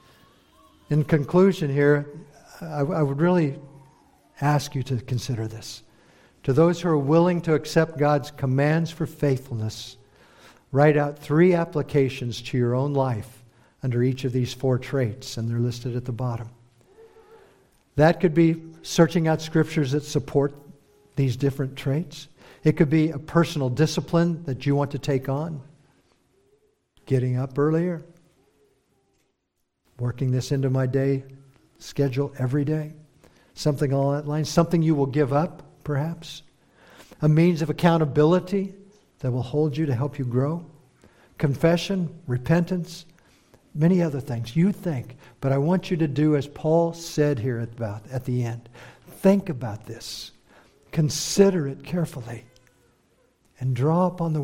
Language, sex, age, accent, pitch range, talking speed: English, male, 60-79, American, 130-160 Hz, 140 wpm